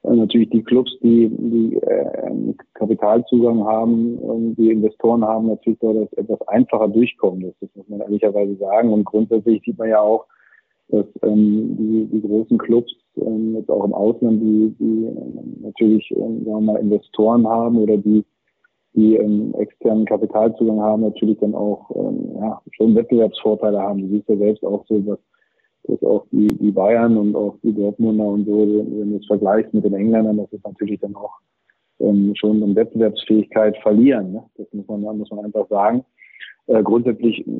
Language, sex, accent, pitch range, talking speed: German, male, German, 105-115 Hz, 160 wpm